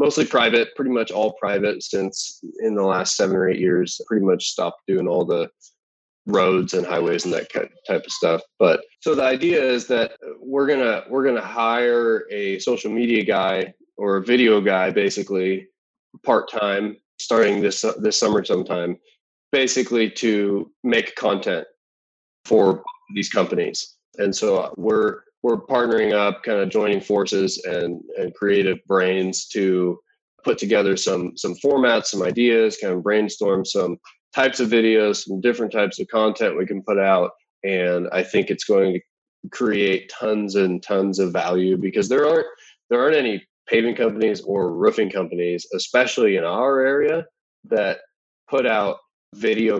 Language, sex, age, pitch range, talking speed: English, male, 20-39, 95-135 Hz, 160 wpm